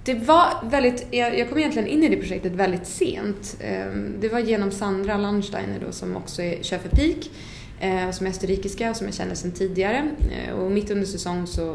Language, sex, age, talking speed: English, female, 20-39, 190 wpm